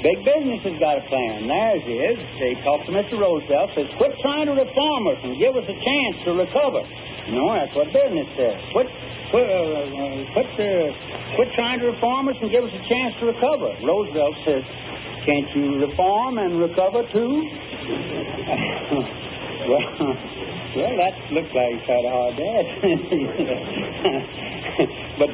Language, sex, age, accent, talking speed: English, male, 60-79, American, 155 wpm